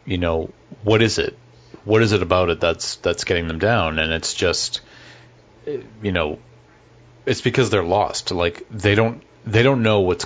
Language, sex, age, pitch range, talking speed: English, male, 30-49, 90-110 Hz, 180 wpm